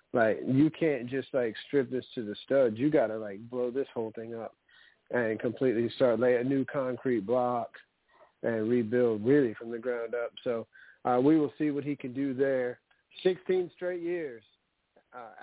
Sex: male